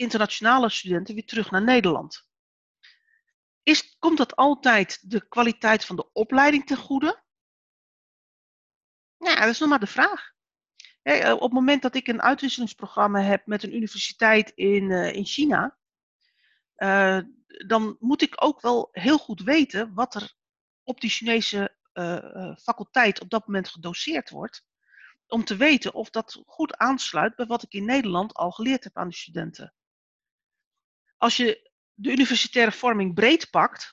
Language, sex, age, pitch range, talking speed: Dutch, female, 40-59, 195-250 Hz, 150 wpm